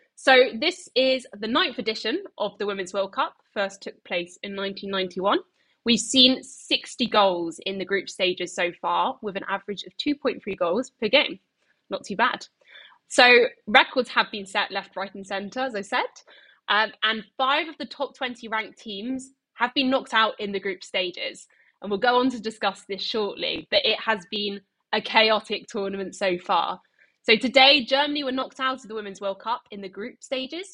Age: 10-29